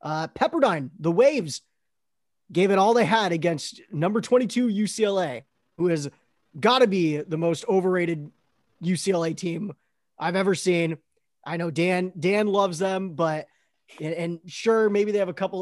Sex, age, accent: male, 20-39, American